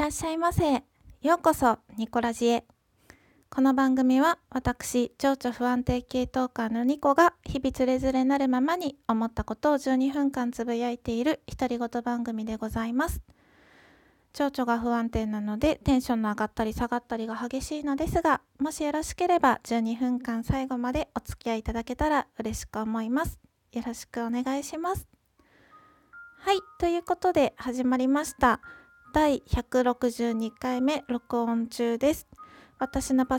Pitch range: 240-295 Hz